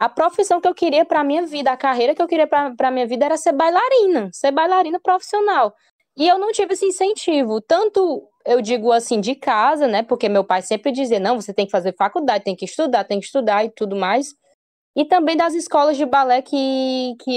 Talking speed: 225 wpm